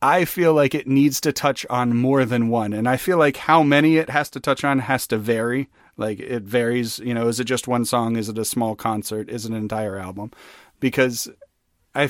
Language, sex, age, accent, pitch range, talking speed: English, male, 40-59, American, 120-145 Hz, 235 wpm